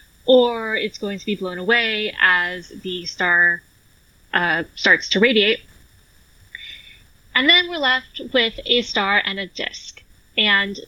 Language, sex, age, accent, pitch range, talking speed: English, female, 10-29, American, 185-225 Hz, 140 wpm